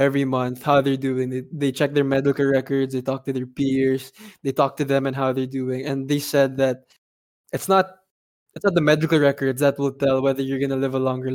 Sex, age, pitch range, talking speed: male, 20-39, 135-150 Hz, 235 wpm